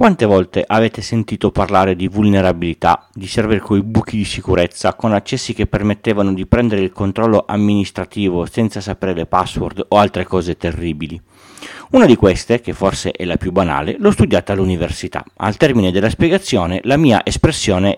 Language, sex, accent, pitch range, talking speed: Italian, male, native, 90-115 Hz, 165 wpm